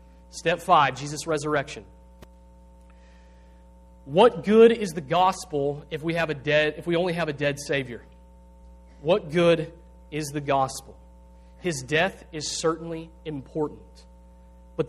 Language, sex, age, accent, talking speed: English, male, 30-49, American, 130 wpm